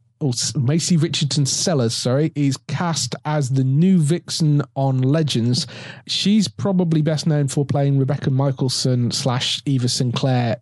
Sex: male